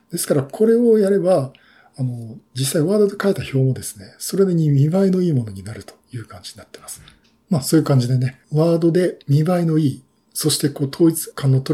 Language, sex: Japanese, male